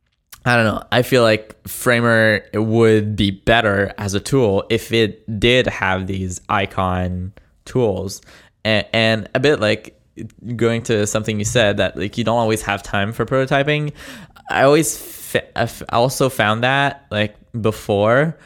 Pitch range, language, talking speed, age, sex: 105-120 Hz, English, 145 wpm, 20-39, male